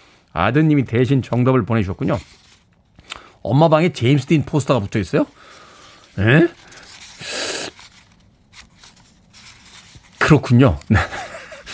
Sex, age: male, 40-59